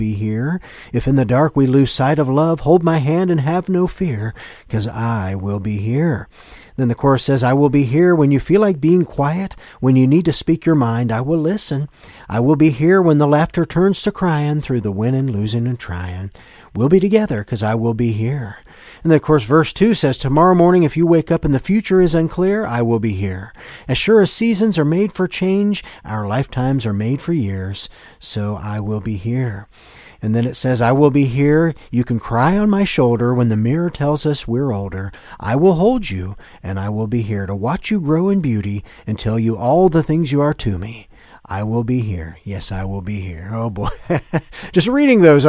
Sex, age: male, 40-59